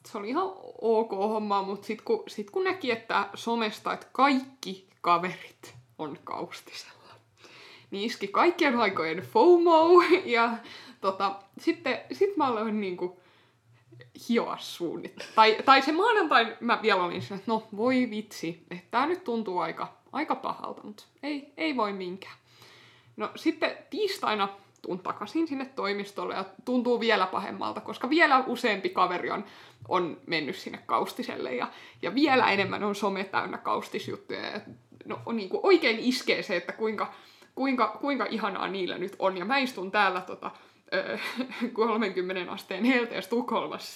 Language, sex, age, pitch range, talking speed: Finnish, female, 20-39, 190-265 Hz, 145 wpm